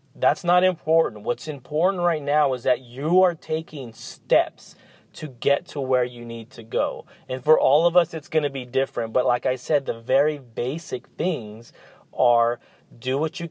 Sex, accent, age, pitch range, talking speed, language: male, American, 30-49, 130-180 Hz, 190 wpm, English